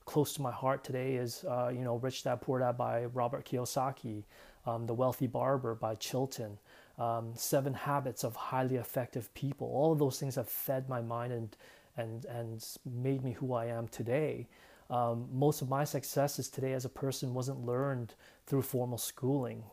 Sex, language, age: male, English, 30-49